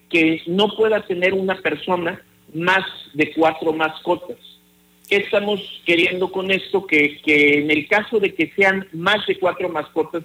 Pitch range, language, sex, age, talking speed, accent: 155-190 Hz, Spanish, male, 50-69, 150 wpm, Mexican